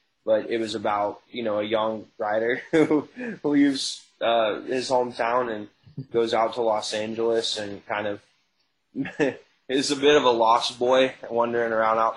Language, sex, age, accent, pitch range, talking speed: English, male, 20-39, American, 110-125 Hz, 165 wpm